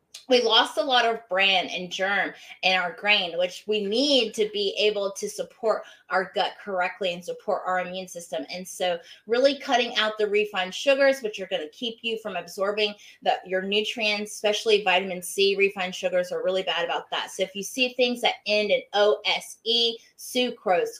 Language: English